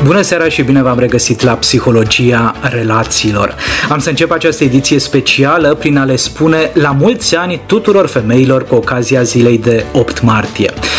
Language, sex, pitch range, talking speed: Romanian, male, 130-180 Hz, 165 wpm